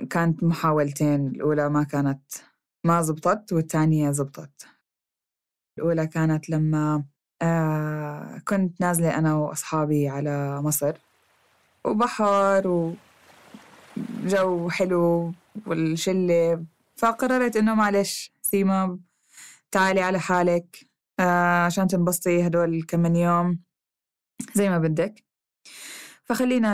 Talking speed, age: 90 wpm, 20-39